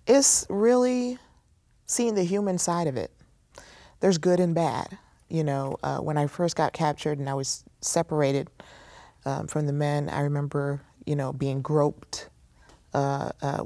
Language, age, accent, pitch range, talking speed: English, 30-49, American, 140-155 Hz, 160 wpm